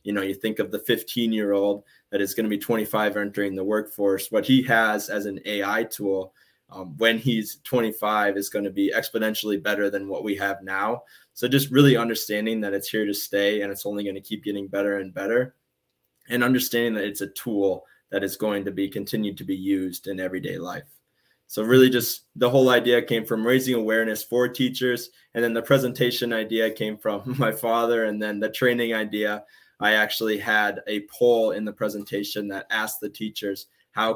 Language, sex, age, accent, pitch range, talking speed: English, male, 20-39, American, 100-115 Hz, 205 wpm